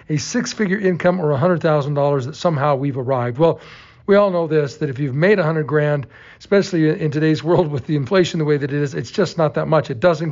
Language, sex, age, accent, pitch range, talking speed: English, male, 50-69, American, 145-185 Hz, 225 wpm